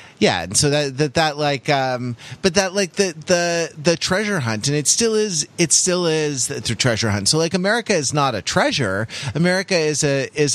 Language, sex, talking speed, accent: English, male, 210 wpm, American